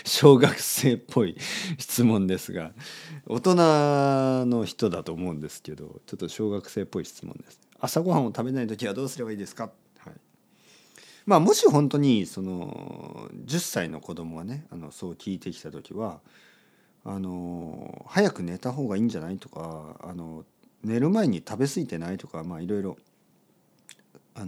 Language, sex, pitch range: Japanese, male, 90-145 Hz